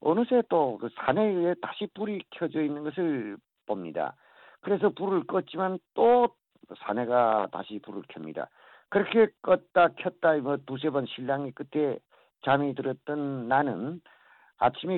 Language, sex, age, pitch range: Korean, male, 50-69, 135-185 Hz